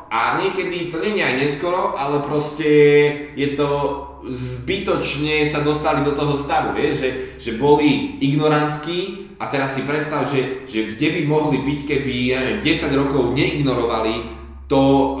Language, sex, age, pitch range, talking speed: Slovak, male, 20-39, 105-140 Hz, 145 wpm